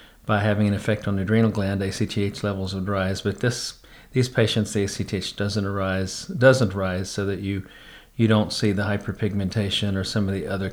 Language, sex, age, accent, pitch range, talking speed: English, male, 40-59, American, 100-110 Hz, 195 wpm